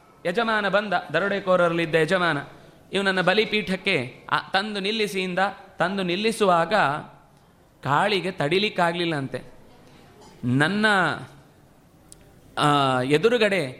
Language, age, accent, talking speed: Kannada, 30-49, native, 75 wpm